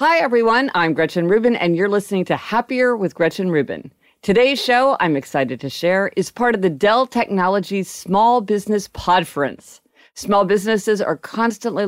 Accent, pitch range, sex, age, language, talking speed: American, 155-225 Hz, female, 50-69, English, 160 wpm